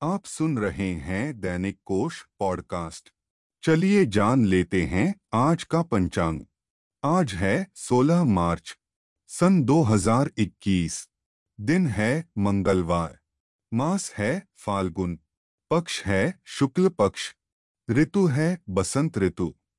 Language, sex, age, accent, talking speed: Hindi, male, 30-49, native, 105 wpm